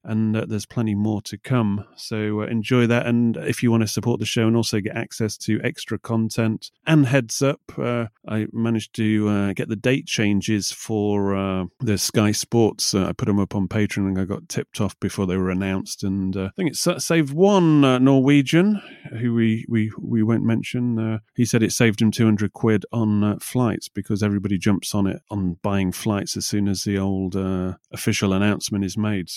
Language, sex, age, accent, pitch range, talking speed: English, male, 30-49, British, 100-115 Hz, 210 wpm